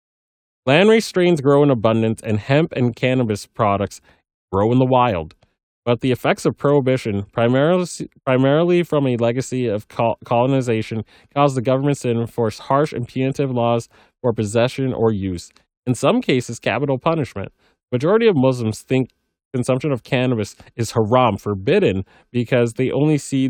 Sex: male